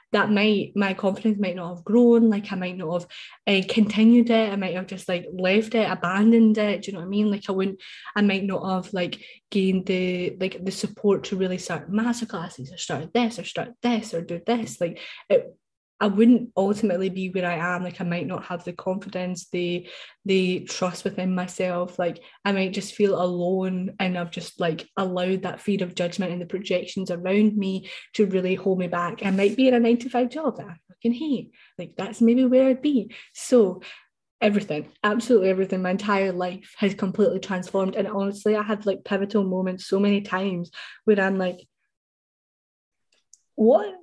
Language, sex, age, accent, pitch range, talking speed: English, female, 10-29, British, 185-215 Hz, 200 wpm